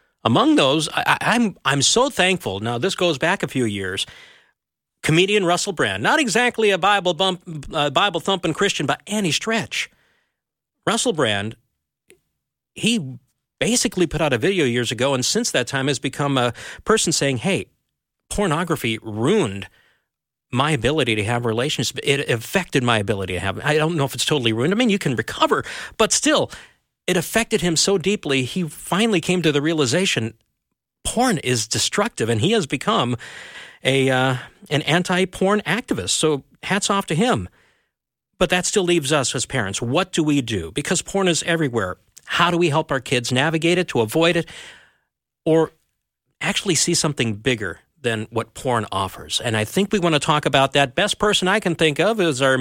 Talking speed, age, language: 180 wpm, 50-69, English